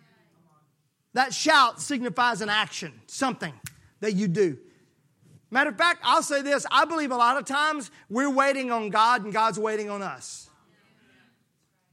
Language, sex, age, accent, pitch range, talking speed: English, male, 40-59, American, 160-240 Hz, 150 wpm